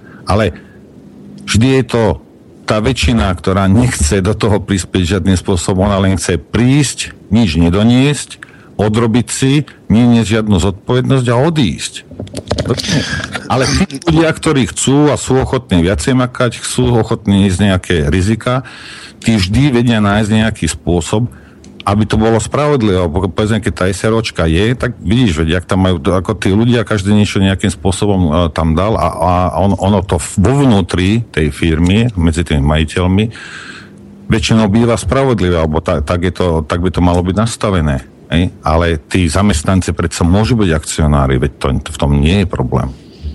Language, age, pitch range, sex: Slovak, 50-69, 90-115 Hz, male